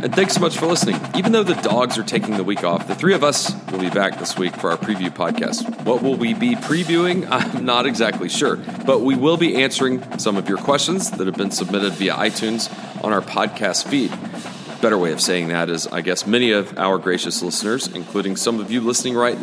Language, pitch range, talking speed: English, 110-150 Hz, 230 wpm